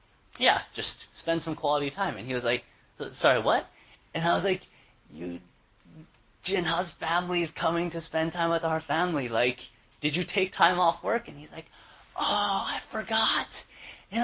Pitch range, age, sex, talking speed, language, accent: 115-175 Hz, 30-49, male, 175 wpm, English, American